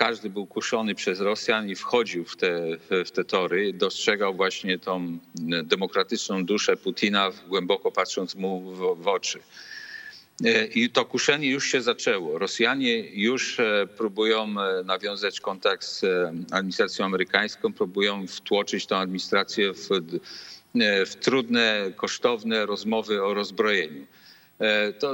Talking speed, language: 115 wpm, English